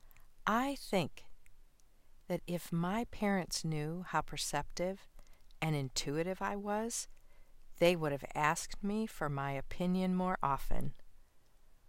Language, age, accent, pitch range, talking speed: English, 40-59, American, 150-190 Hz, 115 wpm